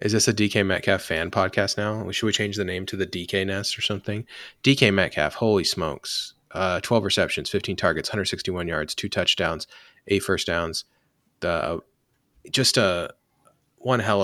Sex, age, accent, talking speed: male, 20-39, American, 175 wpm